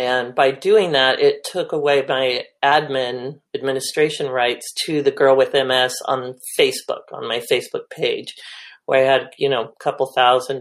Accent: American